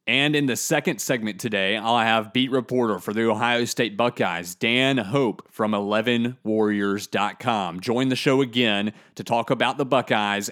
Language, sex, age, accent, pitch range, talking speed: English, male, 30-49, American, 110-130 Hz, 160 wpm